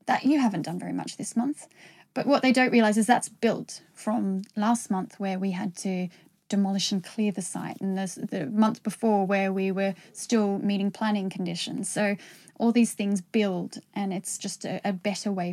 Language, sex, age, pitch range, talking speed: English, female, 10-29, 190-235 Hz, 200 wpm